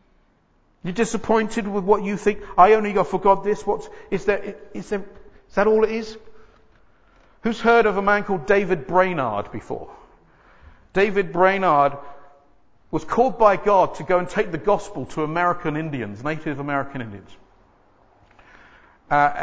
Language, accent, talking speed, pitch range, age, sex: English, British, 150 wpm, 145-205 Hz, 50-69, male